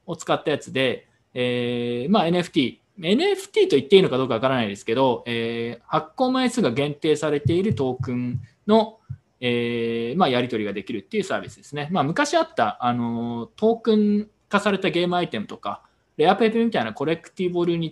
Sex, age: male, 20-39